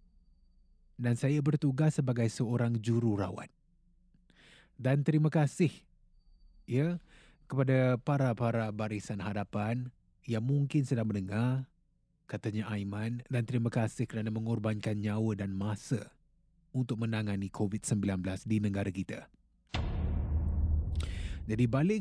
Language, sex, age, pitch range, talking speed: Malay, male, 20-39, 105-145 Hz, 100 wpm